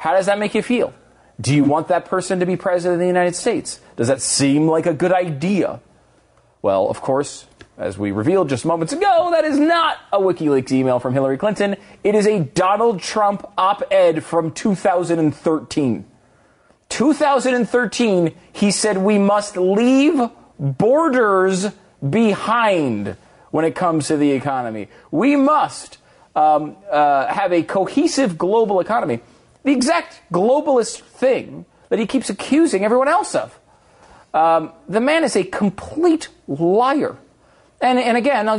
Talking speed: 150 wpm